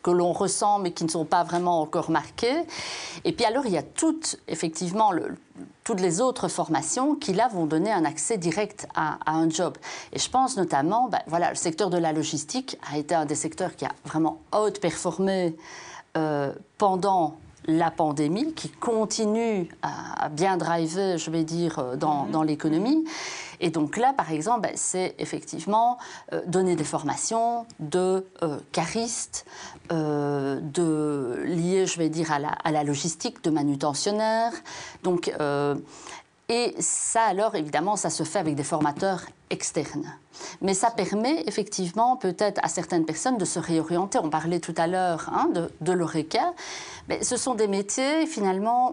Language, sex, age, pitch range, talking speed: French, female, 40-59, 160-220 Hz, 165 wpm